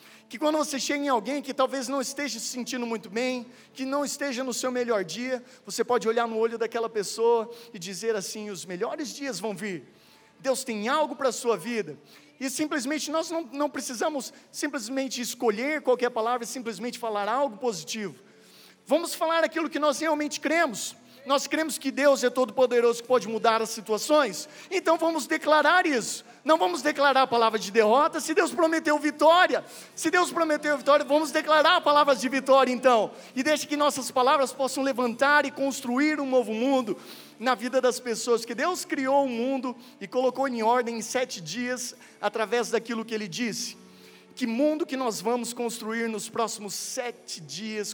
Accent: Brazilian